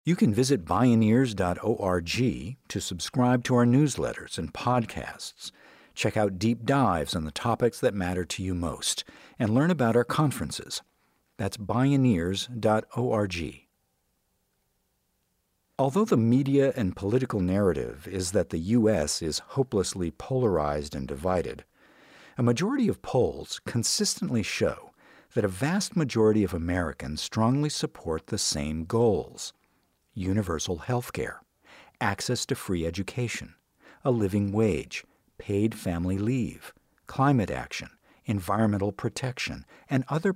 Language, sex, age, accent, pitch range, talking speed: English, male, 50-69, American, 95-130 Hz, 120 wpm